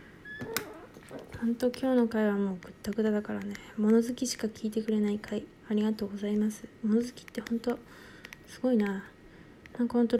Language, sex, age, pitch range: Japanese, female, 20-39, 205-240 Hz